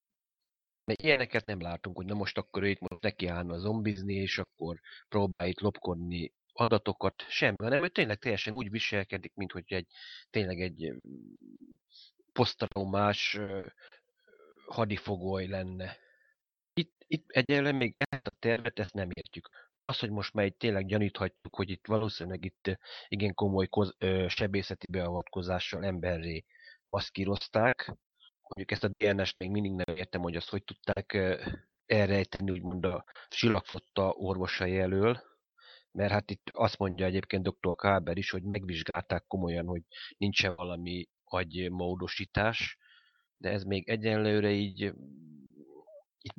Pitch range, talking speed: 90-105 Hz, 130 wpm